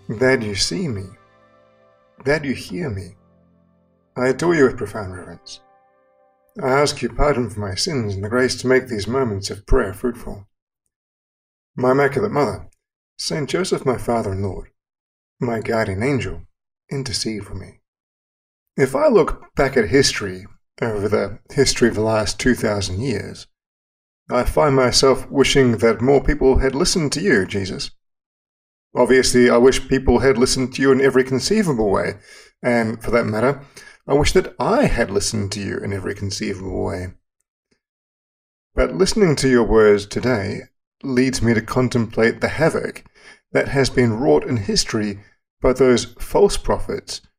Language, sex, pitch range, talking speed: English, male, 95-130 Hz, 155 wpm